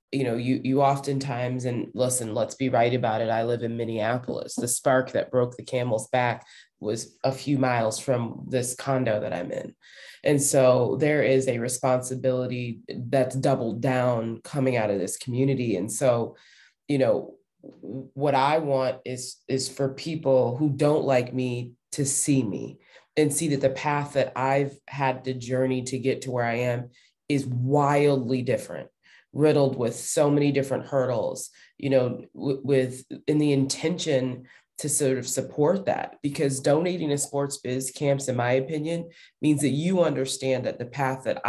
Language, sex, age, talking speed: English, female, 20-39, 170 wpm